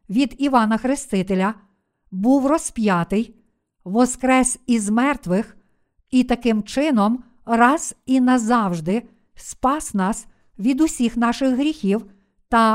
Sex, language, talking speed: female, Ukrainian, 100 wpm